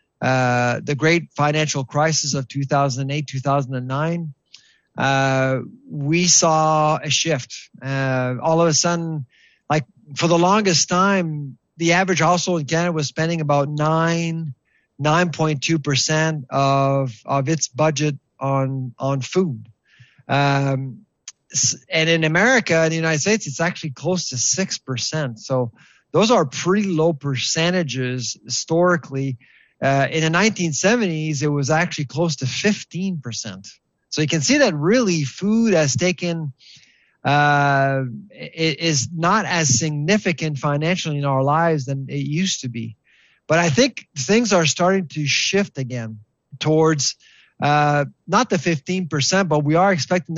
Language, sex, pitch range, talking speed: English, male, 135-170 Hz, 135 wpm